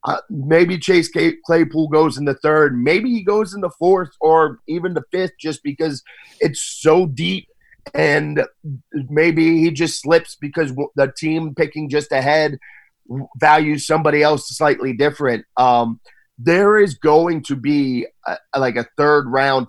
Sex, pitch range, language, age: male, 115-150 Hz, English, 30-49